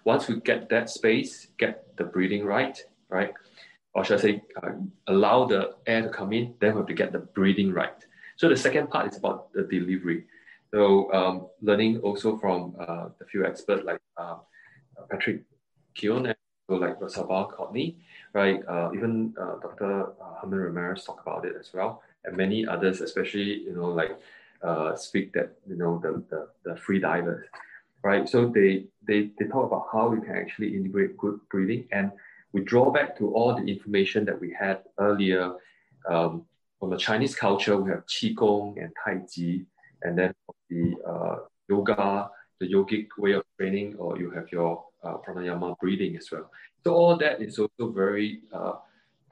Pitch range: 90-110 Hz